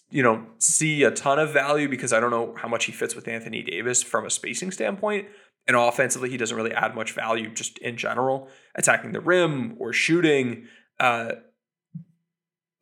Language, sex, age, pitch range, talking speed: English, male, 20-39, 120-160 Hz, 185 wpm